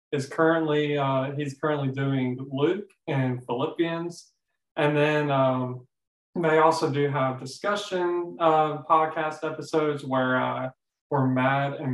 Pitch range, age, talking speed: 130-150 Hz, 20-39, 120 wpm